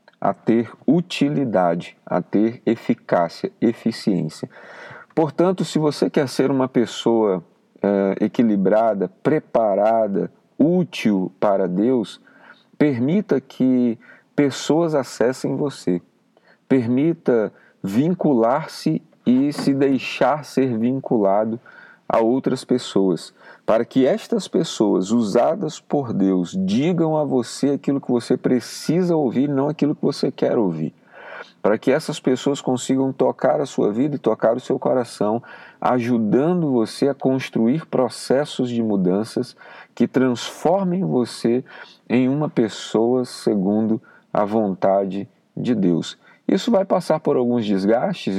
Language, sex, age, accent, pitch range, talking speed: Portuguese, male, 50-69, Brazilian, 100-135 Hz, 115 wpm